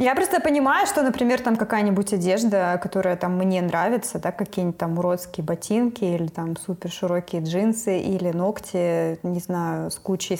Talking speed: 155 wpm